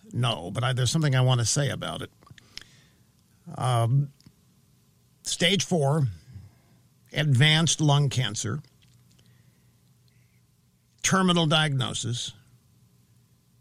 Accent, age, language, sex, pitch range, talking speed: American, 50-69, English, male, 125-155 Hz, 85 wpm